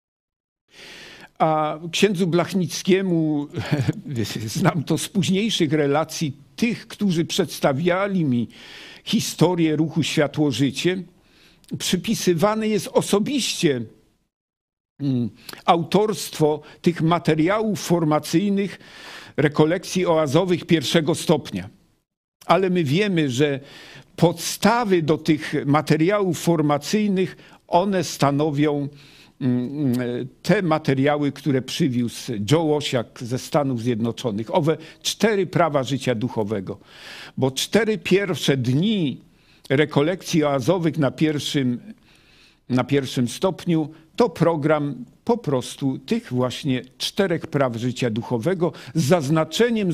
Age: 50-69